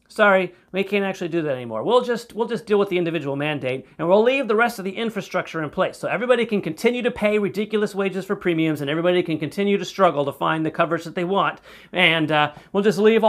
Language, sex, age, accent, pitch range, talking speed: English, male, 40-59, American, 155-210 Hz, 245 wpm